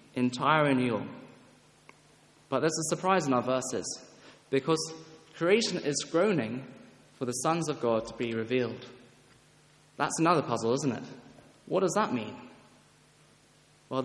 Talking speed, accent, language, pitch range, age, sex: 130 wpm, British, English, 125-155 Hz, 20-39, male